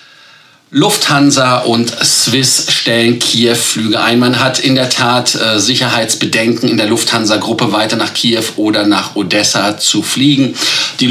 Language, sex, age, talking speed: German, male, 40-59, 130 wpm